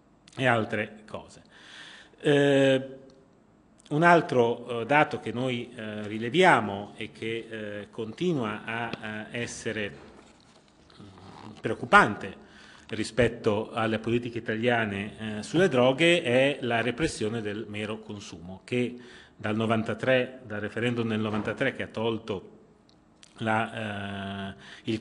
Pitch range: 105-130 Hz